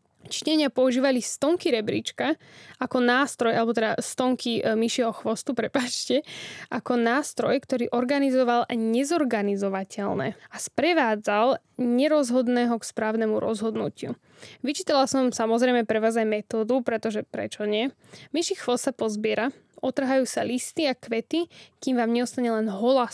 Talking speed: 120 wpm